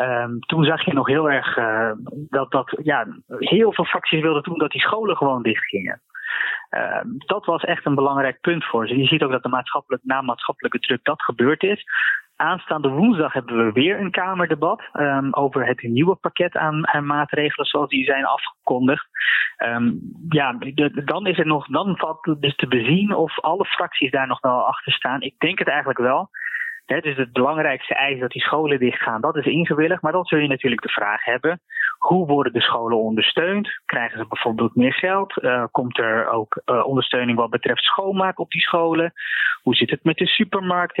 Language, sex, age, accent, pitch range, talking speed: Dutch, male, 20-39, Dutch, 125-175 Hz, 200 wpm